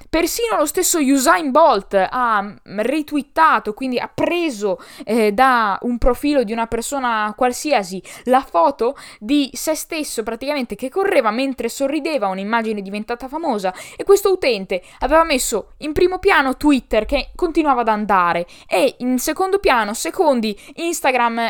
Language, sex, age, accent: Italian, female, 20-39, native